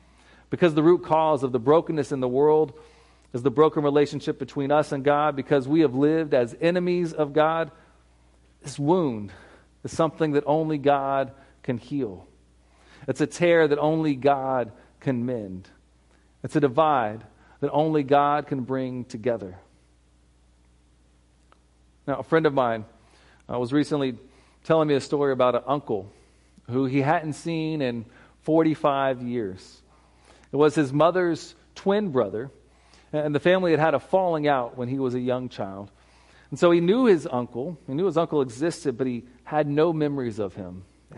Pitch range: 115-155 Hz